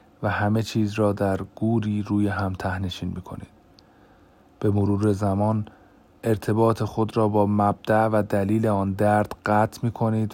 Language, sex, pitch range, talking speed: Persian, male, 95-110 Hz, 150 wpm